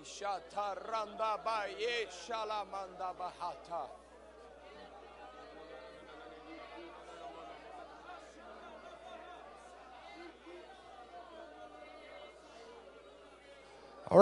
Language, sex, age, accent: English, male, 50-69, American